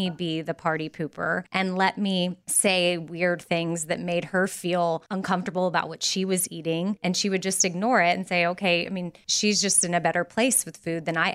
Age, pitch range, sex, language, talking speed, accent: 20-39, 170-205 Hz, female, English, 215 wpm, American